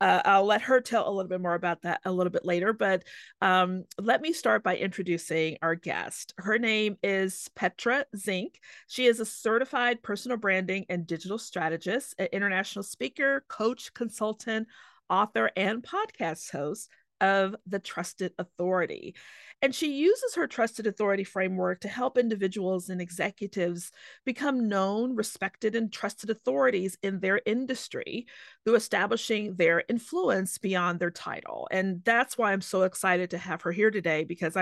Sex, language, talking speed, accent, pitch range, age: female, English, 160 wpm, American, 180-240 Hz, 40-59